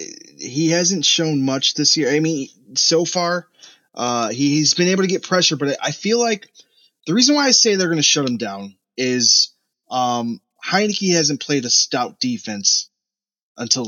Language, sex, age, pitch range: English, male, 20-39, 120-175 Hz